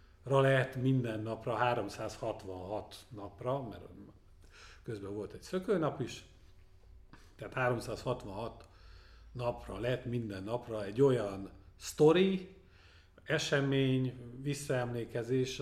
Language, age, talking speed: Hungarian, 50-69, 85 wpm